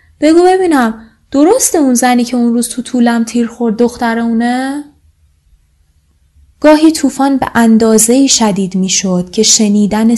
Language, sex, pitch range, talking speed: Persian, female, 175-230 Hz, 130 wpm